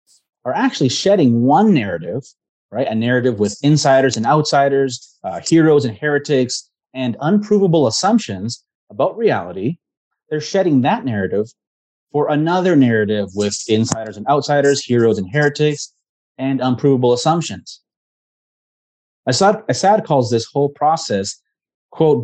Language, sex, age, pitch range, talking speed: English, male, 30-49, 120-155 Hz, 120 wpm